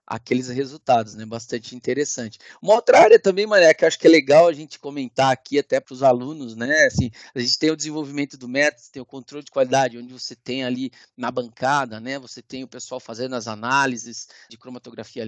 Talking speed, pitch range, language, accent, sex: 210 wpm, 125-175 Hz, Portuguese, Brazilian, male